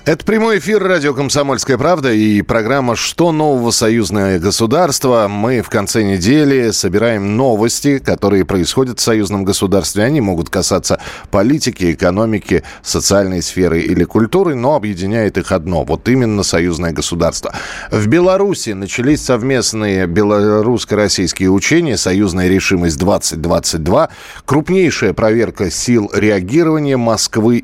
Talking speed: 115 wpm